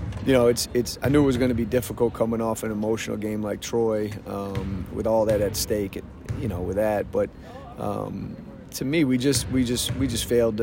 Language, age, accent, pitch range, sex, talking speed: English, 30-49, American, 105-120 Hz, male, 225 wpm